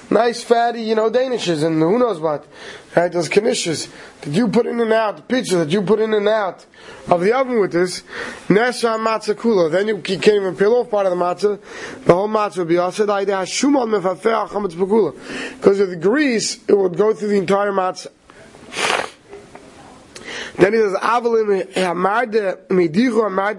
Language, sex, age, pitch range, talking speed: English, male, 20-39, 185-235 Hz, 150 wpm